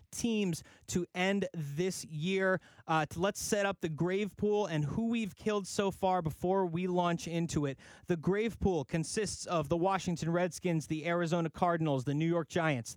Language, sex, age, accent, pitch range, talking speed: English, male, 30-49, American, 150-190 Hz, 175 wpm